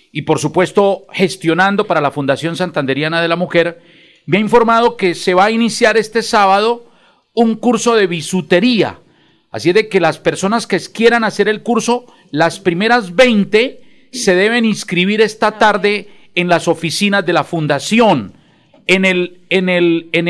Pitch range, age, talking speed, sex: 175-220 Hz, 50-69, 155 wpm, male